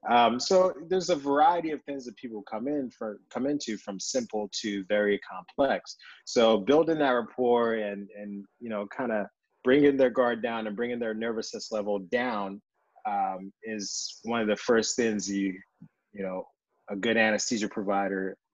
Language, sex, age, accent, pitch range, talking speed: English, male, 20-39, American, 100-125 Hz, 170 wpm